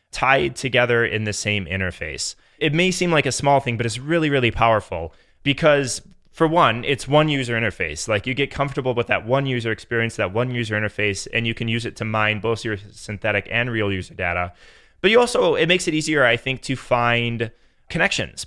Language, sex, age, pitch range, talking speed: English, male, 20-39, 105-130 Hz, 210 wpm